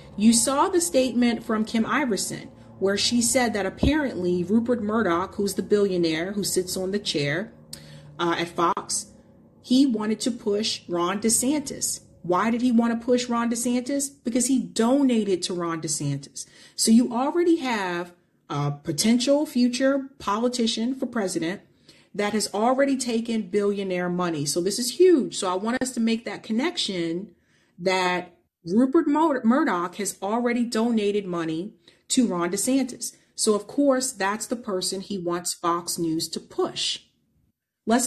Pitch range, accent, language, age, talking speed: 190-255 Hz, American, English, 30-49, 150 wpm